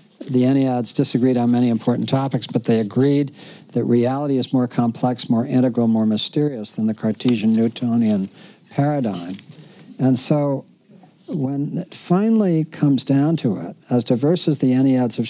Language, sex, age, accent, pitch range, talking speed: English, male, 60-79, American, 115-145 Hz, 150 wpm